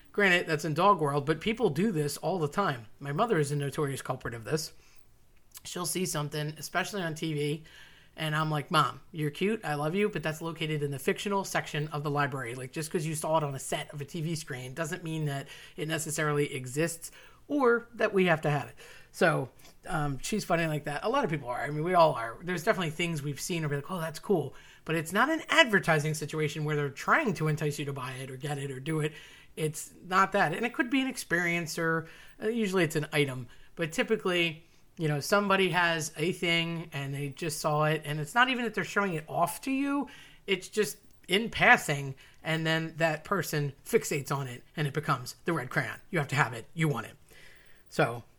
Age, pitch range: 30-49, 145-185 Hz